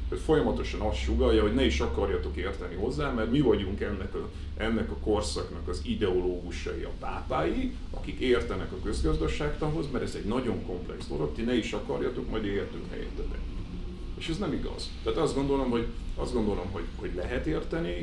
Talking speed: 165 wpm